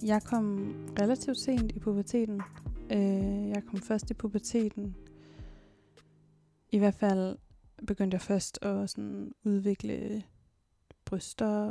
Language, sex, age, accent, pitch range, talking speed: Danish, female, 20-39, native, 195-225 Hz, 100 wpm